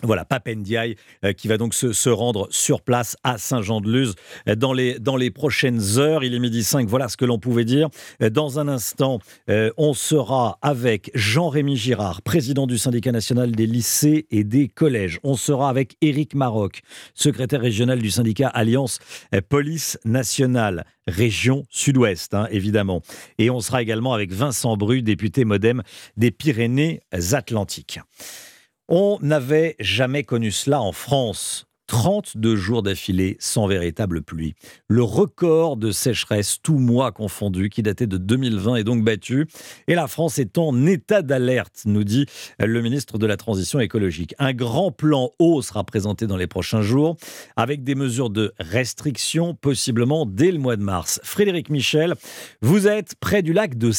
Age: 50-69